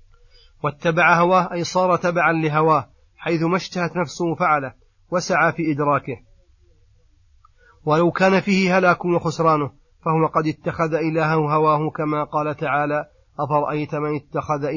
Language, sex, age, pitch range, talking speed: Arabic, male, 40-59, 150-170 Hz, 120 wpm